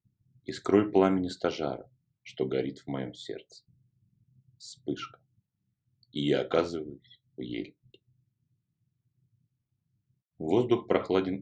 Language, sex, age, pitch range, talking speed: Russian, male, 30-49, 85-125 Hz, 85 wpm